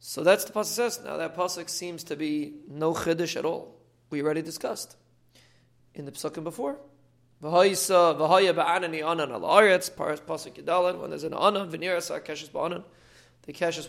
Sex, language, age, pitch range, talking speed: male, English, 30-49, 140-180 Hz, 140 wpm